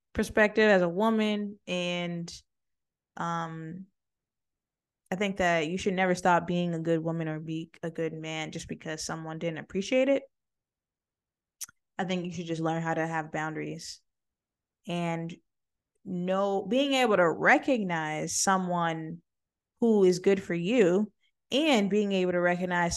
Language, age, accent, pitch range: English, 20-39, American, 165-200 Hz